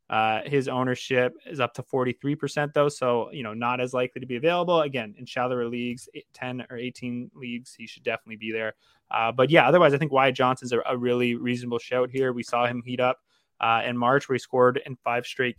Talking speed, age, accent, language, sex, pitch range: 225 wpm, 20-39, American, English, male, 115-135 Hz